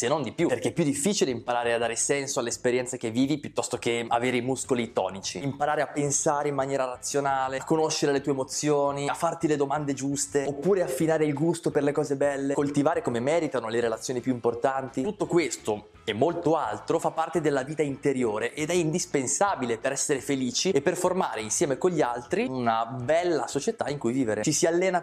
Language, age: Italian, 20-39